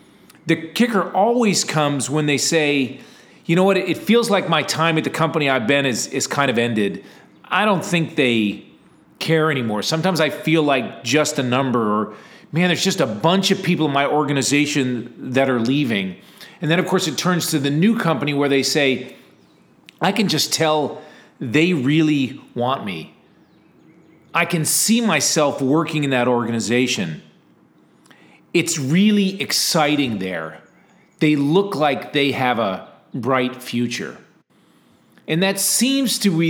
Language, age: English, 40-59